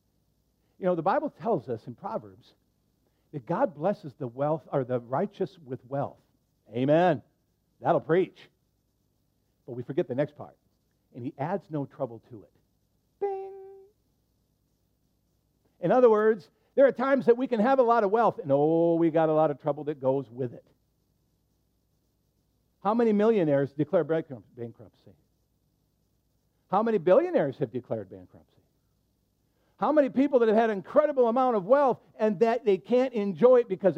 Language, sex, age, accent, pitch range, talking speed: English, male, 50-69, American, 140-235 Hz, 160 wpm